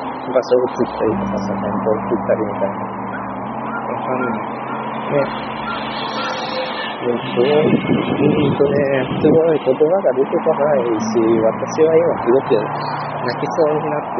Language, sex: Japanese, male